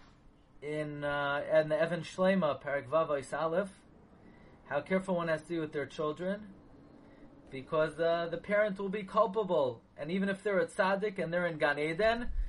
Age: 30-49